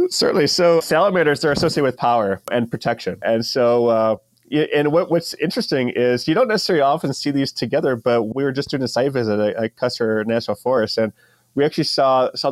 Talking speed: 195 wpm